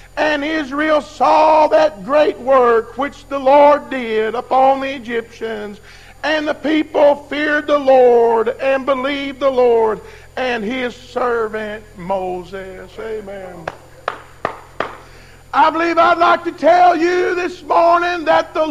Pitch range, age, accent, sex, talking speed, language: 230-335 Hz, 50-69, American, male, 125 wpm, English